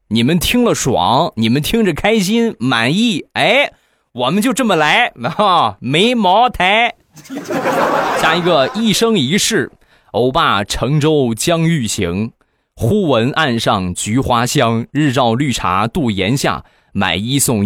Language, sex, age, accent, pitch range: Chinese, male, 20-39, native, 105-155 Hz